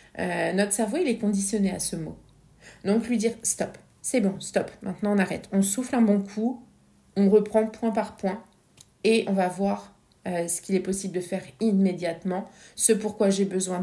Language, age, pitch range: French, 30-49, 185-215 Hz